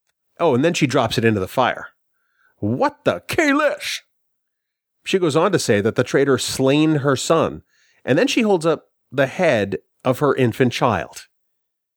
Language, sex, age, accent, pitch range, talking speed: English, male, 40-59, American, 120-165 Hz, 170 wpm